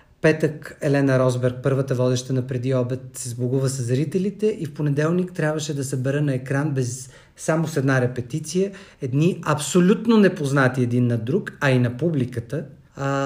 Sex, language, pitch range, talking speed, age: male, Bulgarian, 130-170 Hz, 170 wpm, 40-59